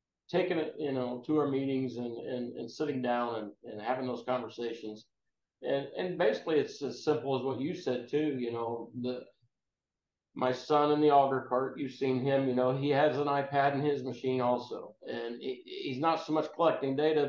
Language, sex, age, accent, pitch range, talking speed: English, male, 50-69, American, 120-145 Hz, 200 wpm